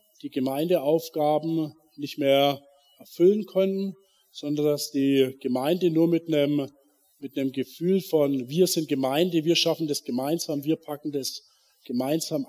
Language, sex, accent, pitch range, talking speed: German, male, German, 140-175 Hz, 135 wpm